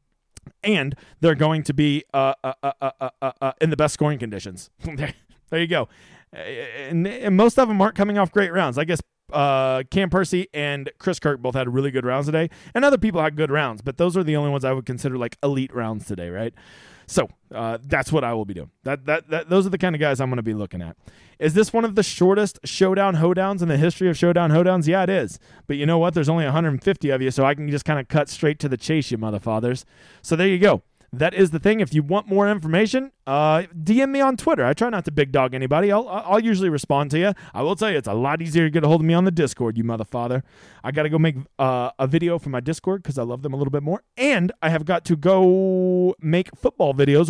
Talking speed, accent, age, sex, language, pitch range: 260 wpm, American, 30-49, male, English, 135-185 Hz